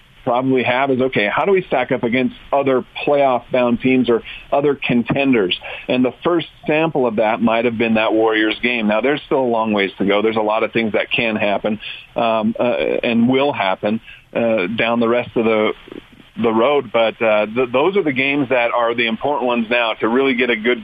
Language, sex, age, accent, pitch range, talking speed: English, male, 50-69, American, 110-130 Hz, 215 wpm